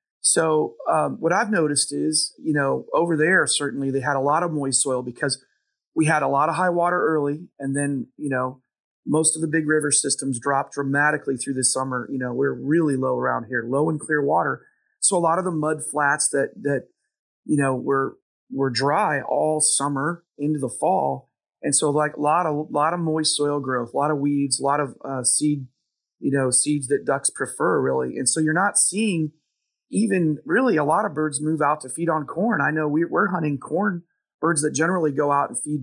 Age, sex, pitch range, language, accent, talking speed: 30-49, male, 135-160 Hz, English, American, 215 wpm